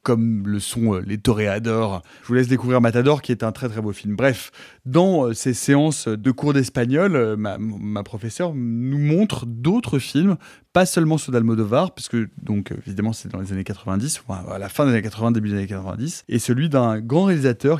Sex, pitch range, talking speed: male, 115-165 Hz, 190 wpm